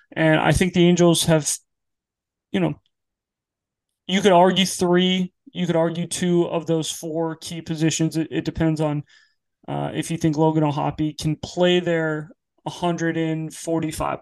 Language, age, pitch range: English, 20-39, 155-185 Hz